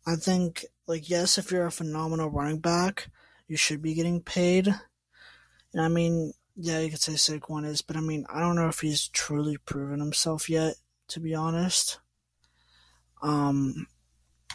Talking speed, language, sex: 165 wpm, English, male